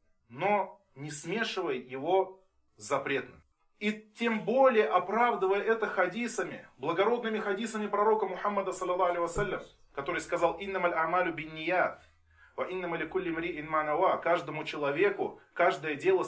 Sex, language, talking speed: male, Russian, 75 wpm